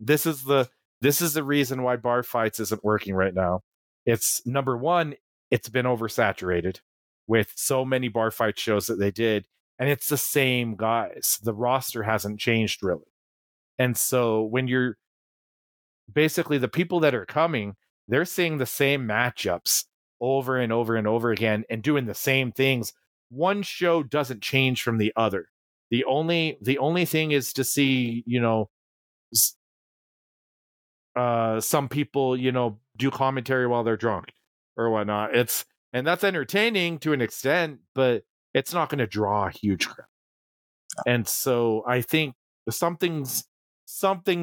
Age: 40-59